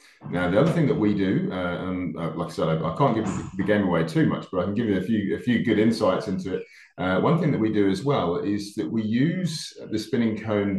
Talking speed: 285 wpm